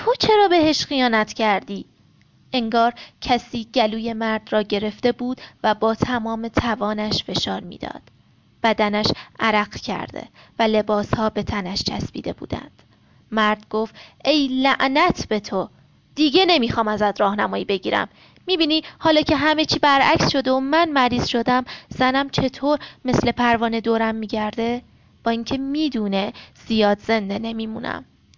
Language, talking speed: Persian, 125 wpm